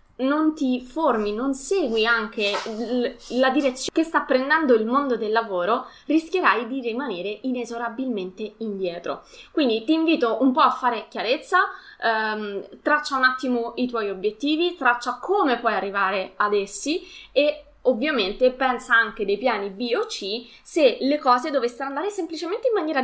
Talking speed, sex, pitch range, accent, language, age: 150 wpm, female, 215-275 Hz, native, Italian, 20-39